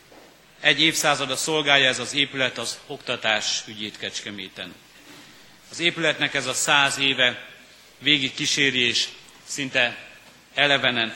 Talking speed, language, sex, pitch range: 100 wpm, Hungarian, male, 115-140 Hz